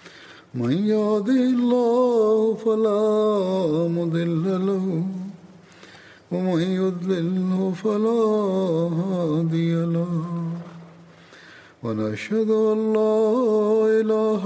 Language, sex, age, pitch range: French, male, 60-79, 170-215 Hz